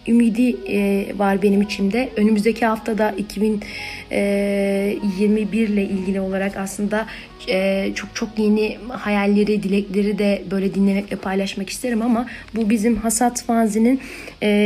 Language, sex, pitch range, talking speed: Turkish, female, 205-240 Hz, 120 wpm